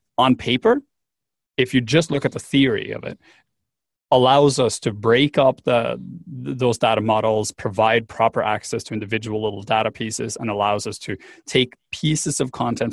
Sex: male